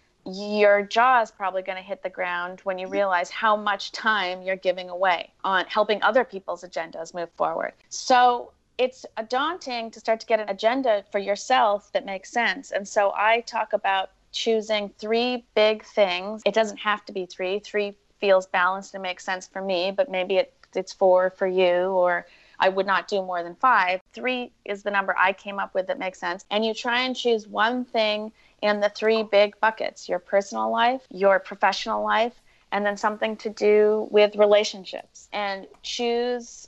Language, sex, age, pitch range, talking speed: English, female, 30-49, 190-225 Hz, 190 wpm